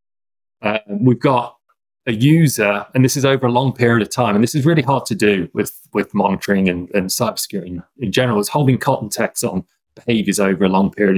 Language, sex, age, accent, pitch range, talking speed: English, male, 30-49, British, 100-120 Hz, 215 wpm